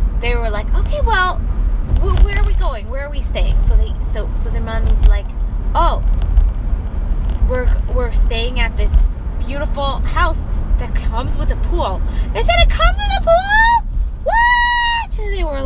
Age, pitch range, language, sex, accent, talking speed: 20-39, 75-95 Hz, English, female, American, 175 wpm